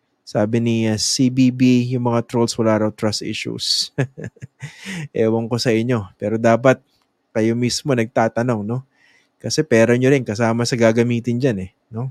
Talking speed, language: 155 wpm, English